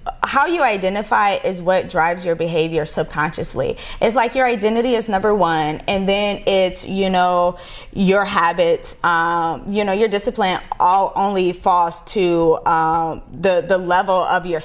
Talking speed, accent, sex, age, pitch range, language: 155 wpm, American, female, 20-39, 175-225 Hz, English